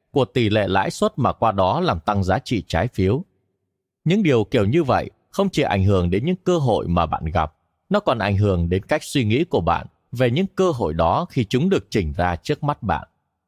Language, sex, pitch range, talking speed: Vietnamese, male, 95-140 Hz, 235 wpm